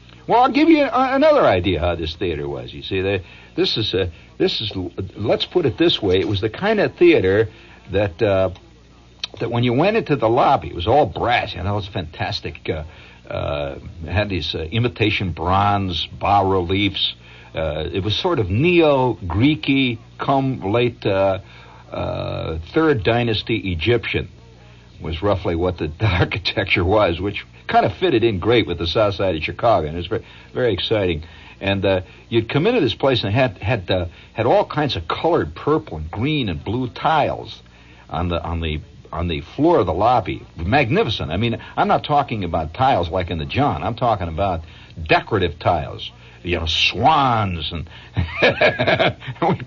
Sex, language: male, English